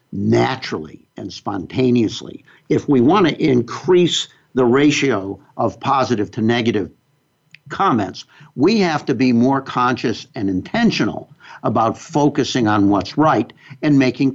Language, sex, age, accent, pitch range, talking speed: English, male, 60-79, American, 115-140 Hz, 125 wpm